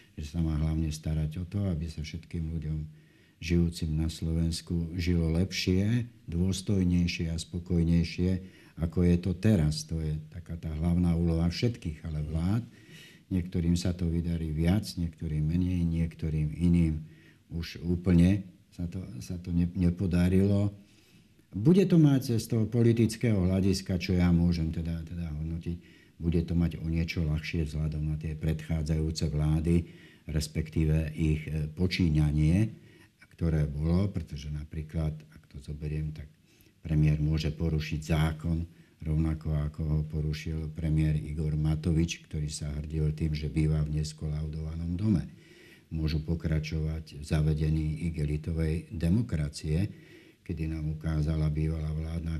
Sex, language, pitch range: male, Slovak, 80-90 Hz